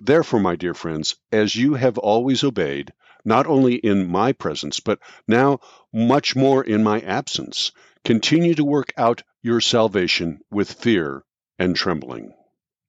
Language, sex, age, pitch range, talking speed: English, male, 50-69, 100-130 Hz, 145 wpm